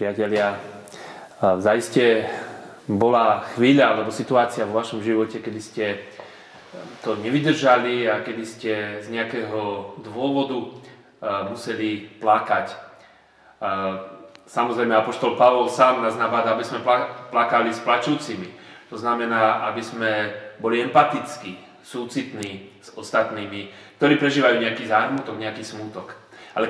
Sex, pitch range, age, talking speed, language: male, 105-120 Hz, 30-49, 105 wpm, Slovak